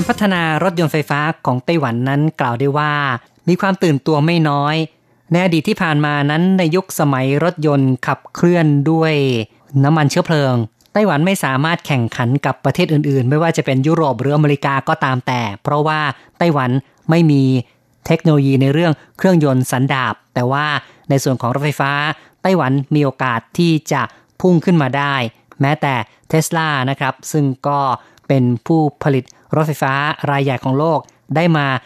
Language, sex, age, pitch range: Thai, female, 20-39, 135-160 Hz